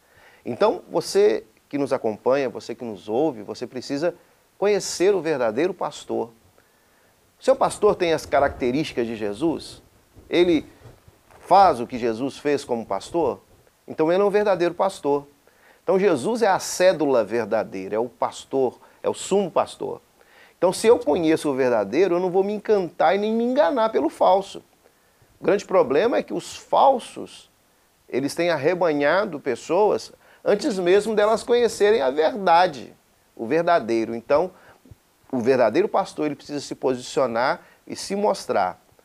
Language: Portuguese